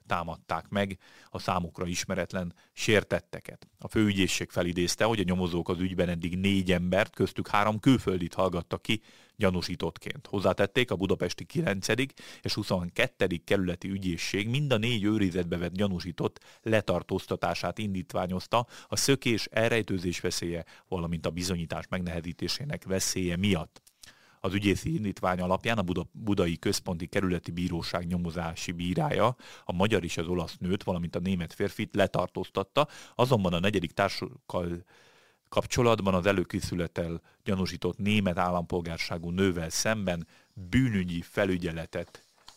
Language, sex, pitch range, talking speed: Hungarian, male, 85-100 Hz, 120 wpm